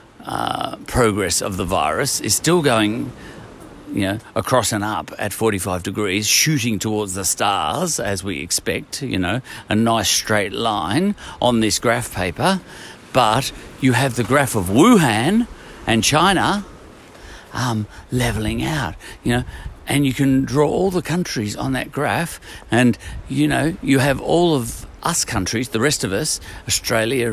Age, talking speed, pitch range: 50-69, 155 wpm, 105-145 Hz